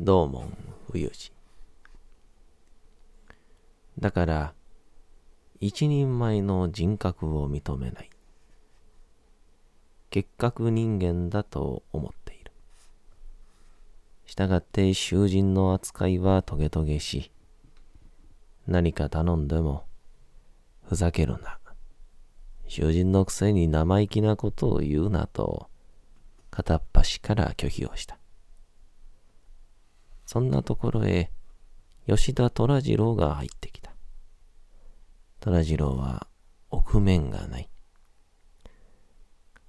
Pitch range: 75-95 Hz